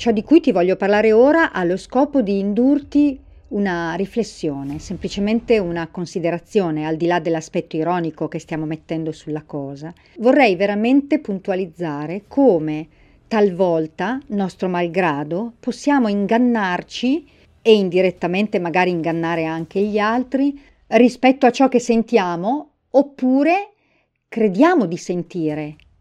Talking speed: 120 wpm